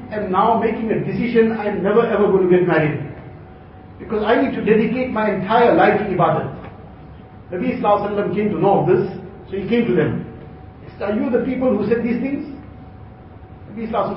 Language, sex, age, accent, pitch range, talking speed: English, male, 50-69, Indian, 185-235 Hz, 185 wpm